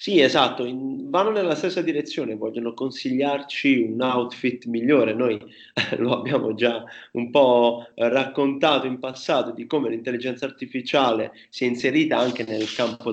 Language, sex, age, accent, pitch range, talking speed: Italian, male, 30-49, native, 110-130 Hz, 135 wpm